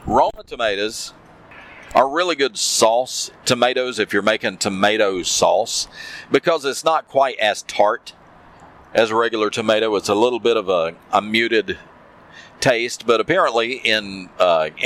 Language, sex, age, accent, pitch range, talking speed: English, male, 50-69, American, 110-170 Hz, 140 wpm